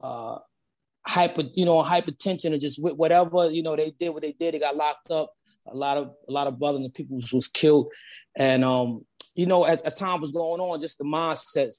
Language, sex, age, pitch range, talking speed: English, male, 20-39, 140-175 Hz, 225 wpm